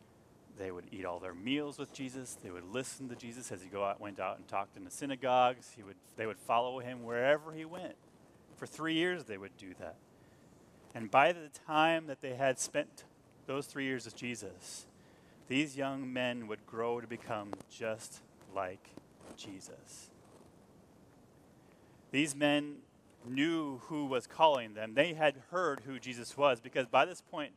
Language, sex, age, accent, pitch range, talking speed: English, male, 30-49, American, 115-145 Hz, 175 wpm